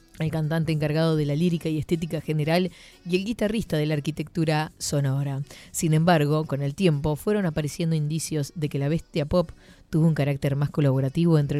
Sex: female